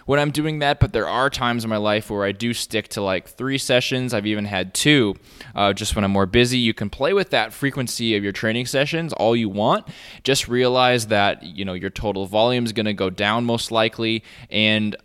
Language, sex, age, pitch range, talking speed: English, male, 20-39, 100-120 Hz, 230 wpm